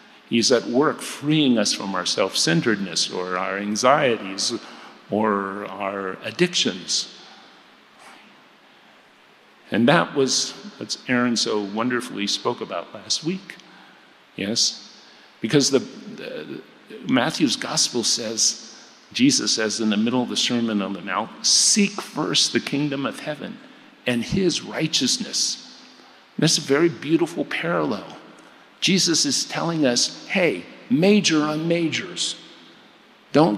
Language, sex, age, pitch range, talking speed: English, male, 50-69, 115-185 Hz, 120 wpm